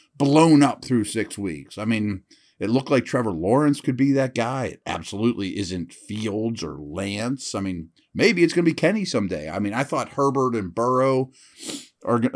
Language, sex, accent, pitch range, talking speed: English, male, American, 105-150 Hz, 190 wpm